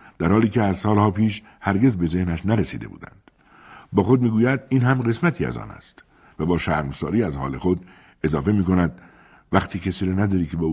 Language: Persian